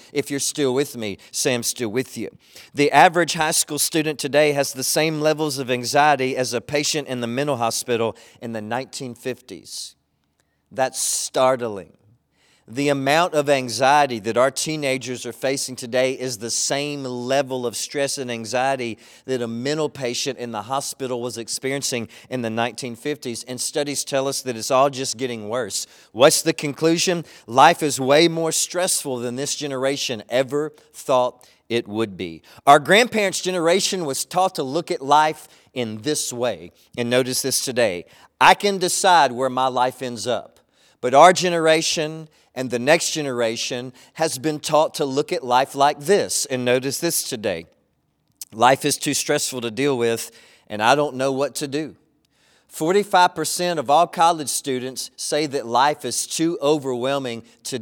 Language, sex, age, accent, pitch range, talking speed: English, male, 40-59, American, 125-150 Hz, 165 wpm